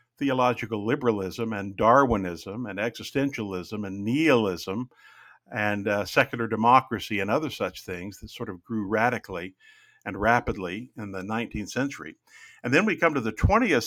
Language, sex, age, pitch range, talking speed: English, male, 50-69, 105-130 Hz, 145 wpm